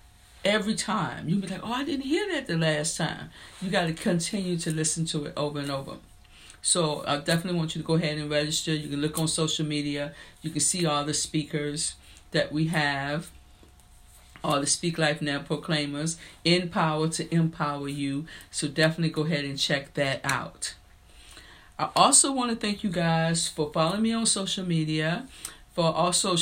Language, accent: English, American